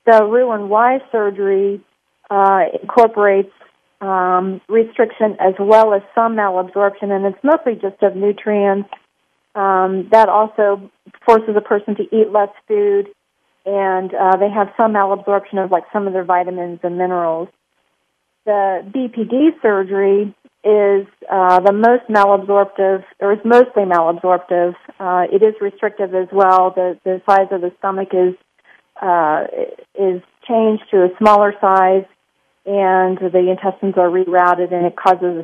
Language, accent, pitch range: English, American, 185-210 Hz